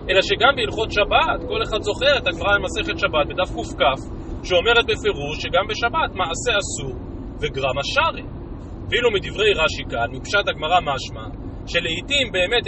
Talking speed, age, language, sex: 140 wpm, 30-49, Hebrew, male